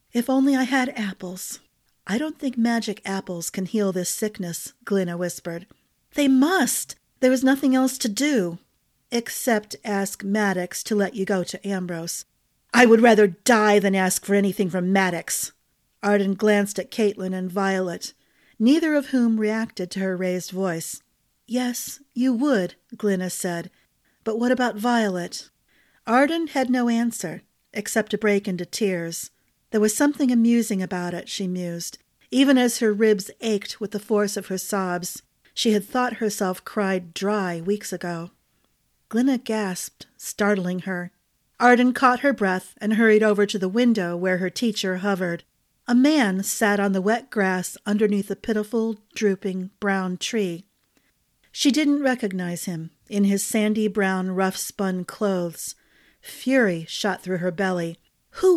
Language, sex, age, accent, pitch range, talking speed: English, female, 40-59, American, 185-235 Hz, 150 wpm